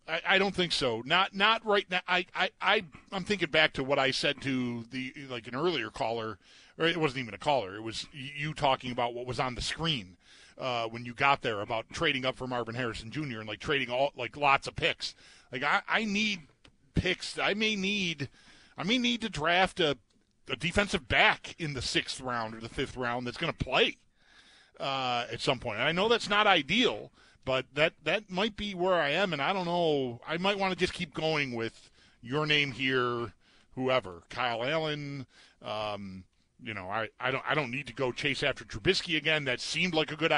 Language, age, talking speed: English, 40-59, 215 wpm